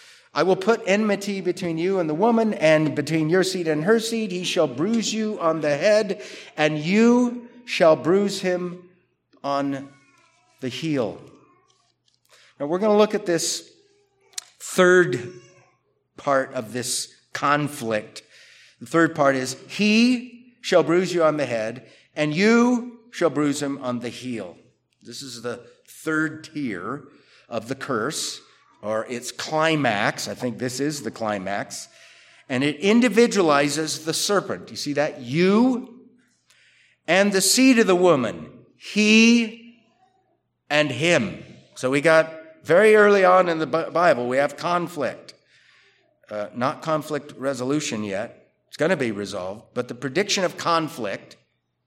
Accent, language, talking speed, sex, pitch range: American, English, 145 wpm, male, 140-210 Hz